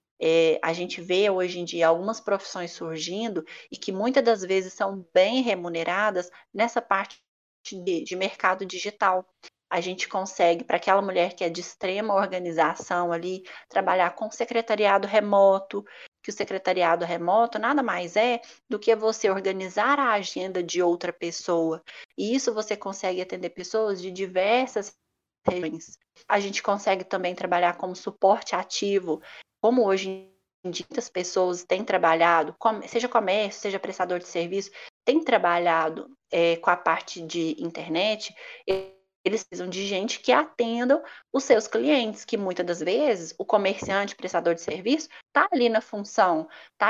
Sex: female